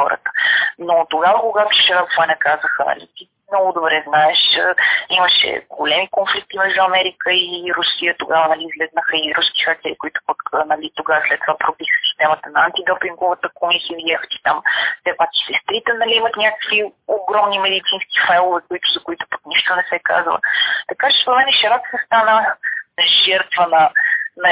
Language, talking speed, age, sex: Bulgarian, 150 wpm, 30-49, female